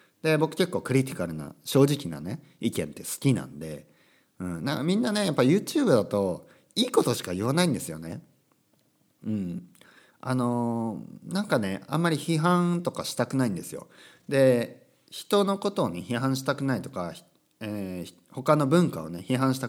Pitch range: 100-170 Hz